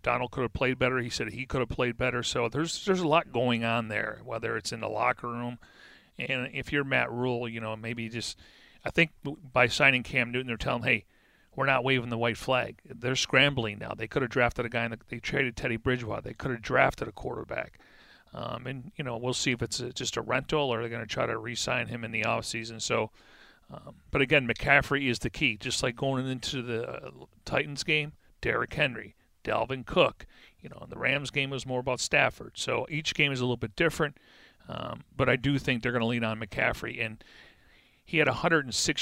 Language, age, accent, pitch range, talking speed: English, 40-59, American, 115-135 Hz, 225 wpm